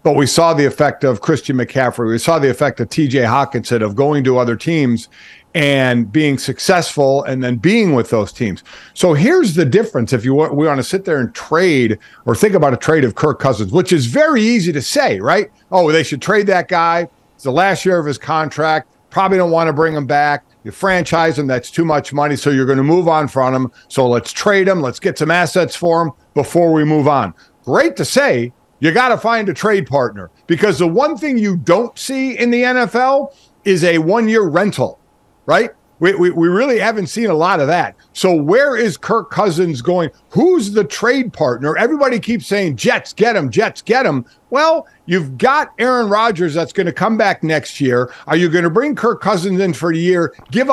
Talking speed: 220 wpm